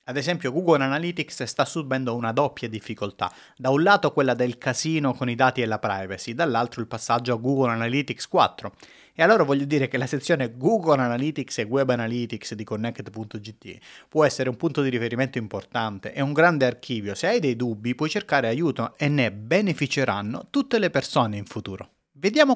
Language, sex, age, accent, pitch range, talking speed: Italian, male, 30-49, native, 120-155 Hz, 185 wpm